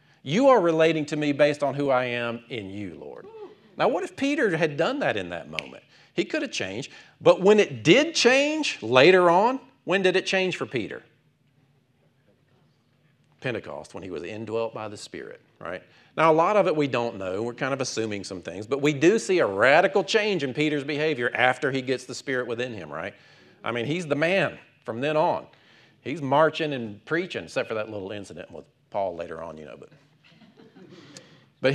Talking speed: 200 wpm